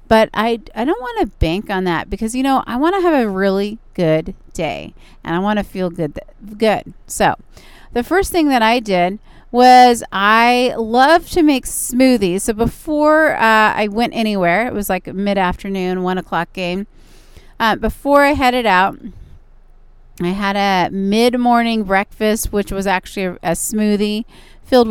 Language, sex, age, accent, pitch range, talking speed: English, female, 30-49, American, 190-240 Hz, 170 wpm